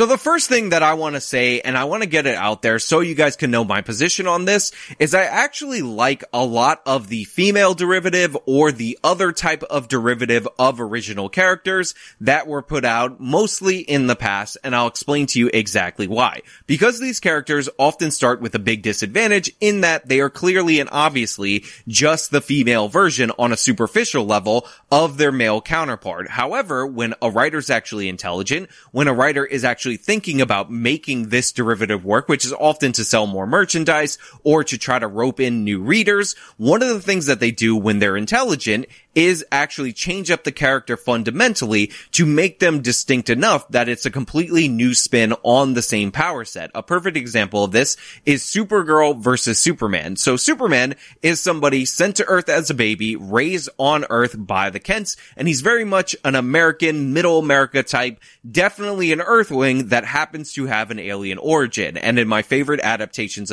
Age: 20-39